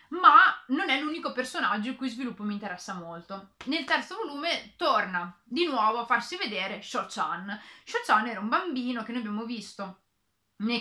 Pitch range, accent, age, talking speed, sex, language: 210-275 Hz, native, 30-49, 165 wpm, female, Italian